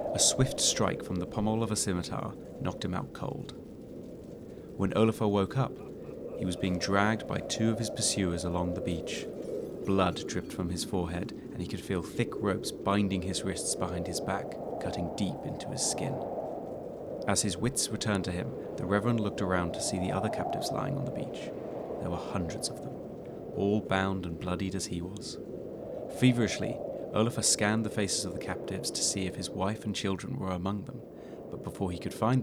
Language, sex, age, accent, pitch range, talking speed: English, male, 30-49, British, 95-115 Hz, 195 wpm